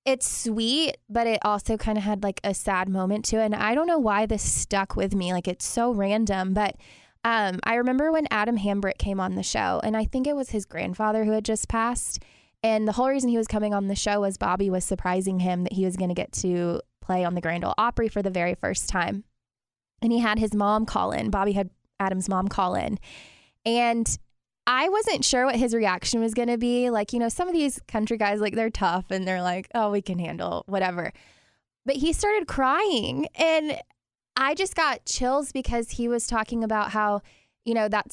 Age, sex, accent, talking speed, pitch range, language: 20-39, female, American, 225 wpm, 190-230 Hz, English